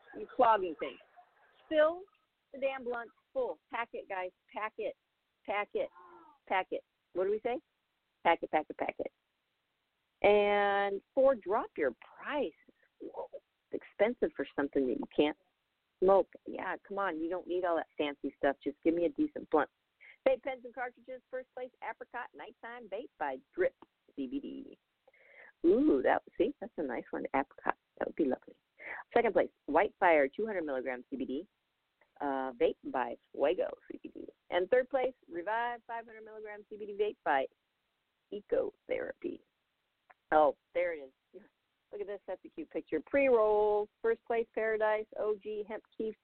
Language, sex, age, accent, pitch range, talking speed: English, female, 50-69, American, 205-315 Hz, 155 wpm